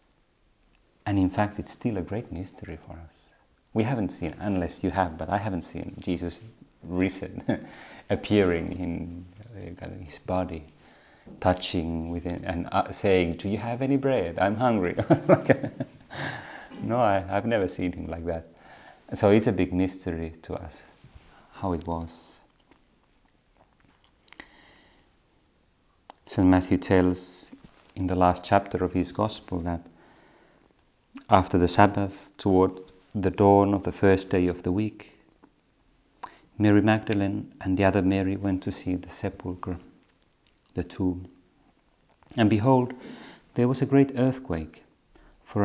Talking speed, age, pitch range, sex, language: 135 wpm, 30-49, 90-105 Hz, male, Finnish